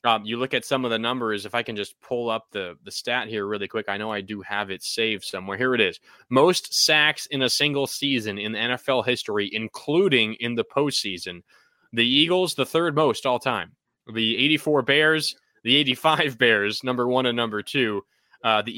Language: English